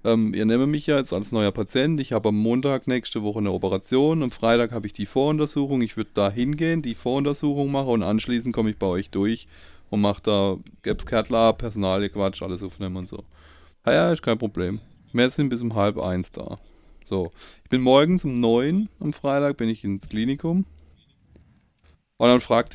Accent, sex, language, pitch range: German, male, German, 95-130 Hz